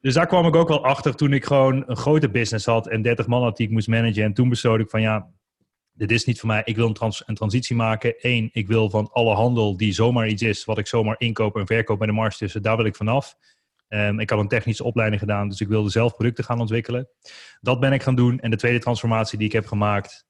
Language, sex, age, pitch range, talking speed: Dutch, male, 30-49, 110-120 Hz, 265 wpm